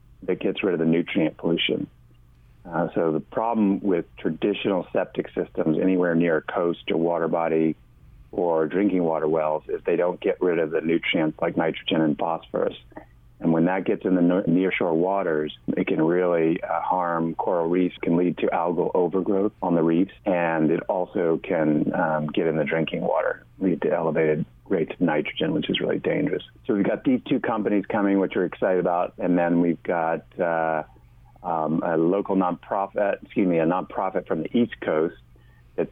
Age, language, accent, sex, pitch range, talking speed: 40-59, English, American, male, 75-85 Hz, 185 wpm